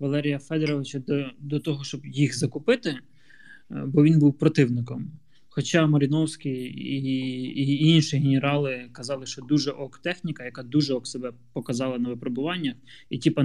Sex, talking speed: male, 145 wpm